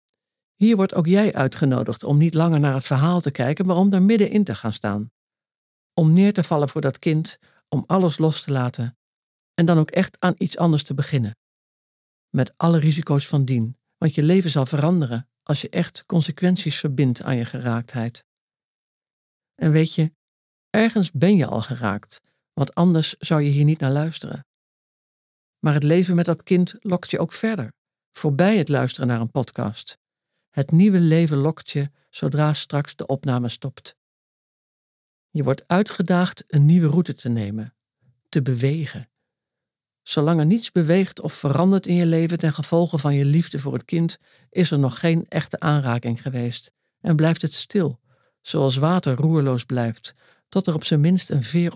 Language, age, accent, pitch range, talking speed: Dutch, 50-69, Dutch, 135-175 Hz, 175 wpm